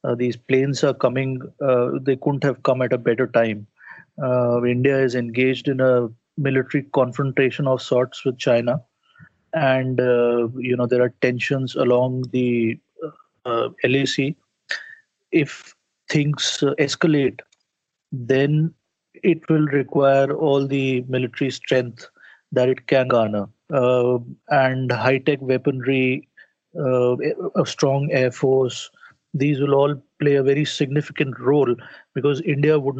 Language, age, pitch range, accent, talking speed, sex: English, 30-49, 125-145 Hz, Indian, 130 wpm, male